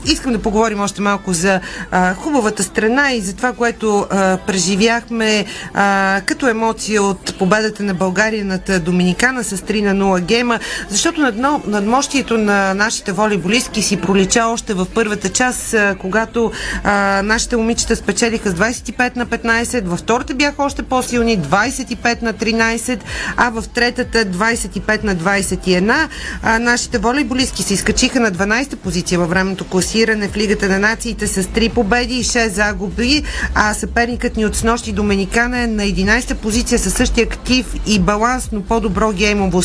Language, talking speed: Bulgarian, 155 wpm